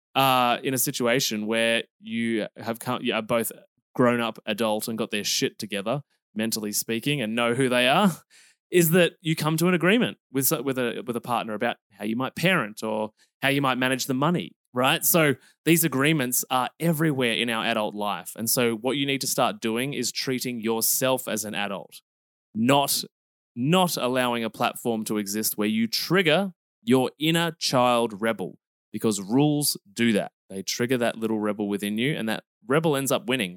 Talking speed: 190 wpm